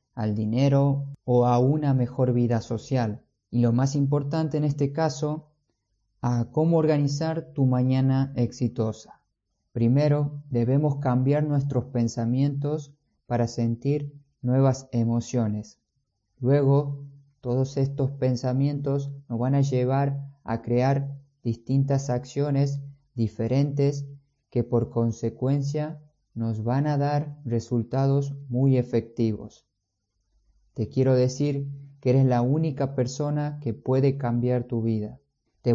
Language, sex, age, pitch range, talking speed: Spanish, male, 20-39, 120-140 Hz, 110 wpm